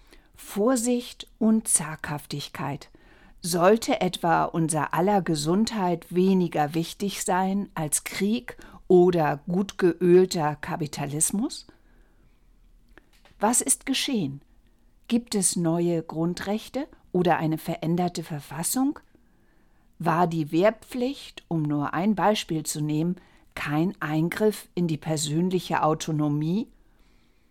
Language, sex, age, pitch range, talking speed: German, female, 50-69, 155-200 Hz, 95 wpm